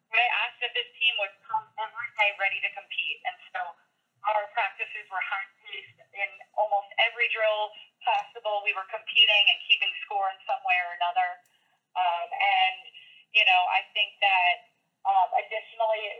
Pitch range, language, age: 200-260 Hz, English, 30-49